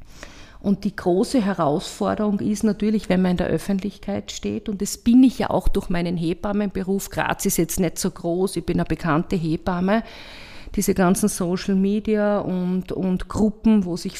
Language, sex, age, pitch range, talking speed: German, female, 50-69, 185-220 Hz, 175 wpm